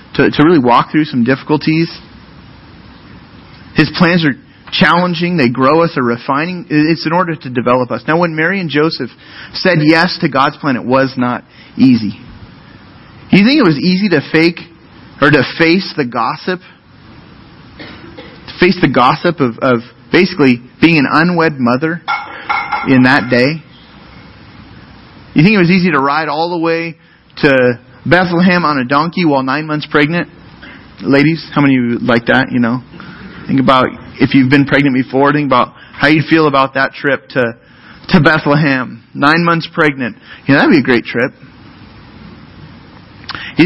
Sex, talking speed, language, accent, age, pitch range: male, 165 wpm, English, American, 30-49, 135-170 Hz